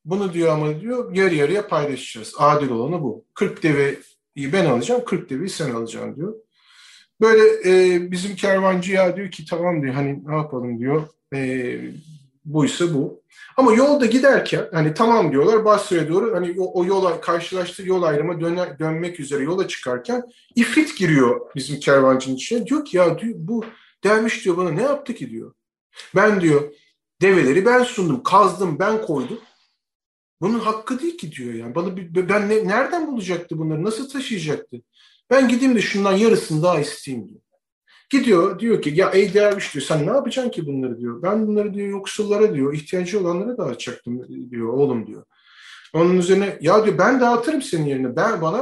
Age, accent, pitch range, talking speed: 40-59, native, 150-215 Hz, 170 wpm